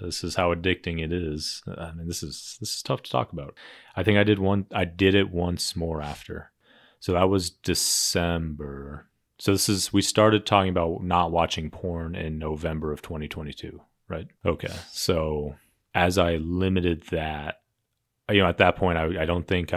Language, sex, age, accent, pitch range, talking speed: English, male, 30-49, American, 80-95 Hz, 185 wpm